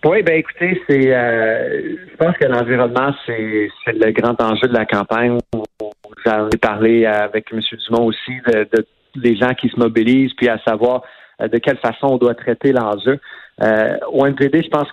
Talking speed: 185 wpm